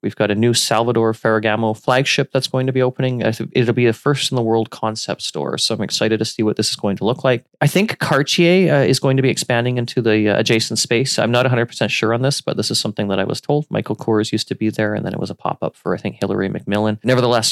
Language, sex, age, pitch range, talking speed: English, male, 30-49, 100-120 Hz, 260 wpm